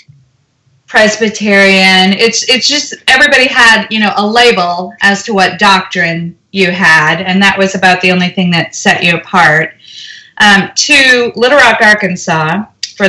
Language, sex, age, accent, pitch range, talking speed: English, female, 30-49, American, 170-210 Hz, 150 wpm